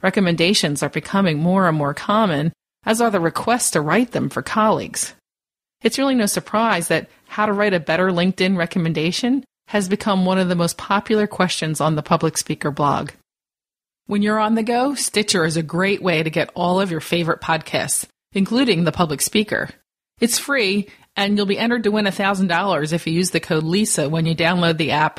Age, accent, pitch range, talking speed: 30-49, American, 165-205 Hz, 195 wpm